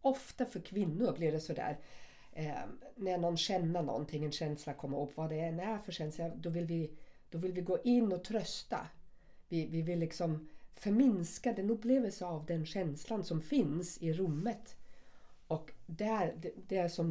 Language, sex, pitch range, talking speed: Swedish, female, 160-205 Hz, 180 wpm